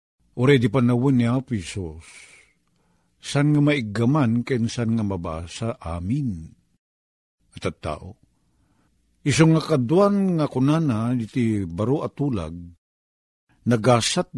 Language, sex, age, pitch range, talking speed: Filipino, male, 50-69, 85-130 Hz, 110 wpm